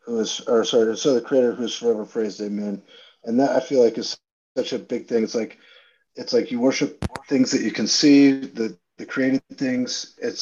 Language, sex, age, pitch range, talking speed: English, male, 40-59, 110-150 Hz, 215 wpm